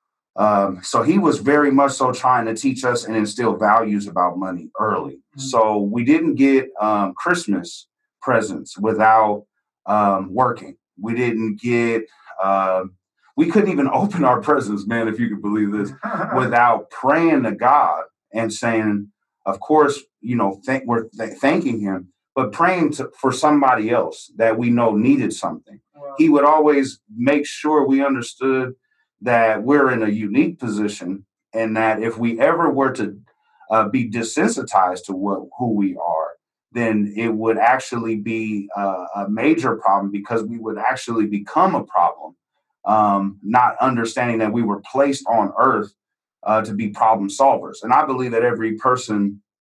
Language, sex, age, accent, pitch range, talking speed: English, male, 30-49, American, 105-130 Hz, 160 wpm